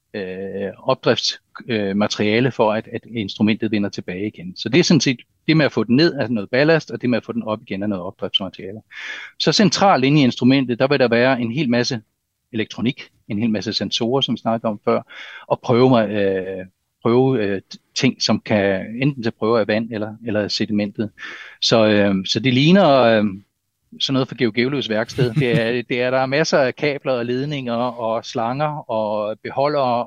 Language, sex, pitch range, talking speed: Danish, male, 110-130 Hz, 200 wpm